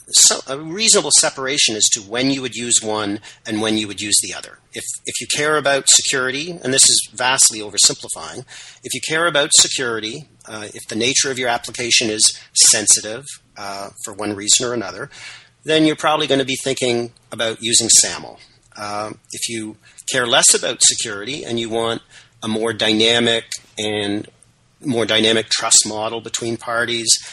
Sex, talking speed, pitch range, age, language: male, 175 wpm, 110-130 Hz, 40-59, English